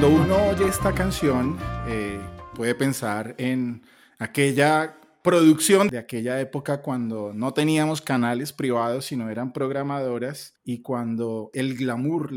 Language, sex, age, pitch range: Spanish, male, 30-49, 125-150 Hz